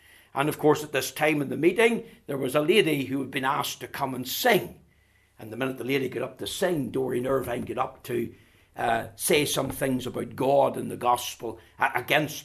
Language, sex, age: English, male, 60-79